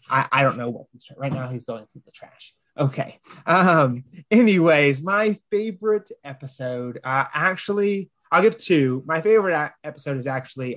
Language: English